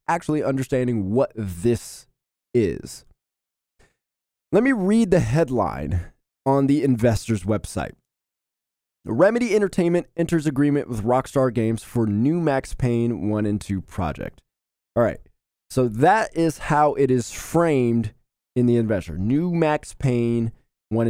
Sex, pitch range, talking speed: male, 110-165 Hz, 130 wpm